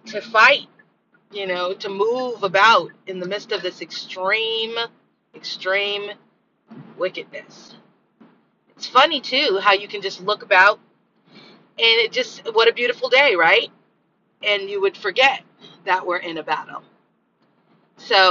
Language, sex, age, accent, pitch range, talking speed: English, female, 30-49, American, 180-220 Hz, 140 wpm